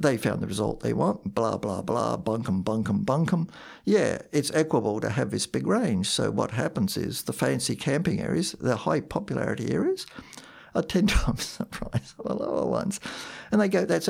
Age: 60-79